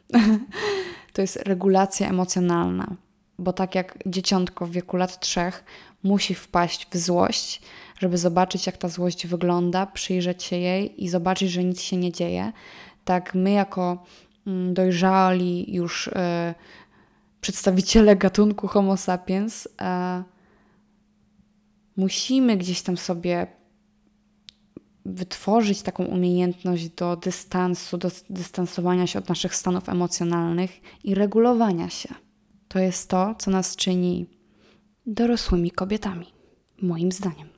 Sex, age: female, 20-39